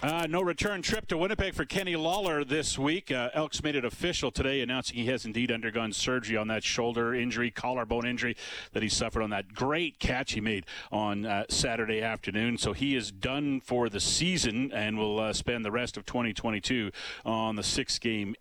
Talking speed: 195 wpm